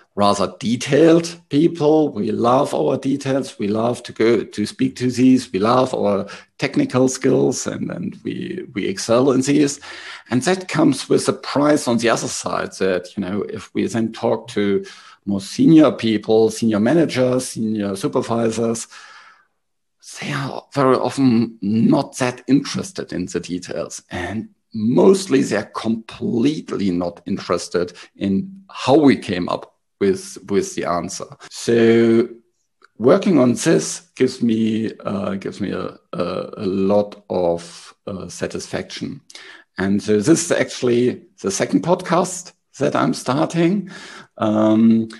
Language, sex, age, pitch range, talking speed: English, male, 50-69, 105-135 Hz, 140 wpm